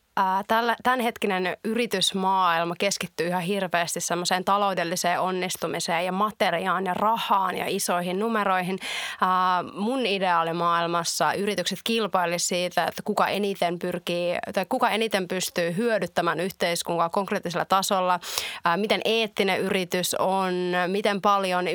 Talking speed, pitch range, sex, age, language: 110 wpm, 180-220 Hz, female, 30-49, Finnish